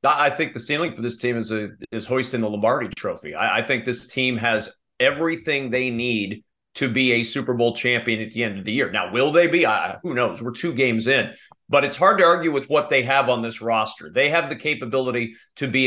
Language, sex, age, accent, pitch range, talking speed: English, male, 40-59, American, 120-140 Hz, 240 wpm